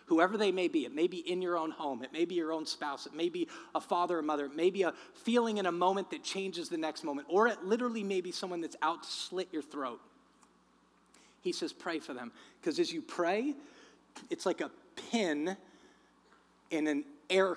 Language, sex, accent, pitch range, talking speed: English, male, American, 160-265 Hz, 220 wpm